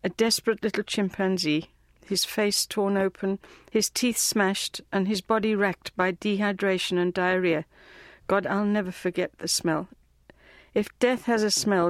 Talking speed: 150 wpm